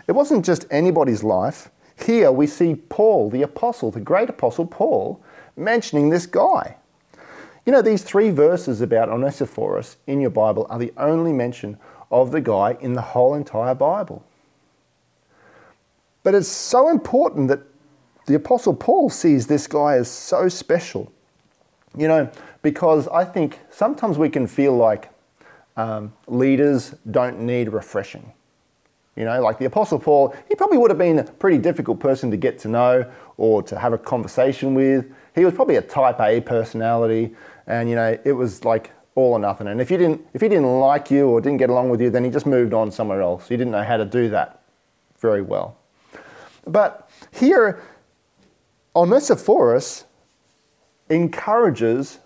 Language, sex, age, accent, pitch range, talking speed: English, male, 40-59, Australian, 120-170 Hz, 165 wpm